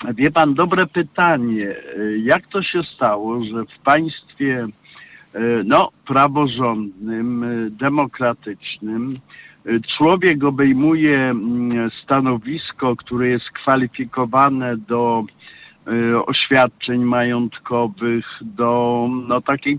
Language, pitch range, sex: Polish, 120-140 Hz, male